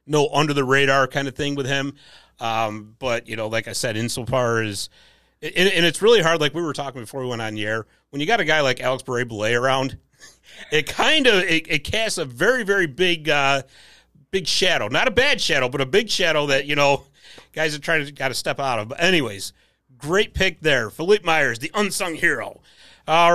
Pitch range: 125-170 Hz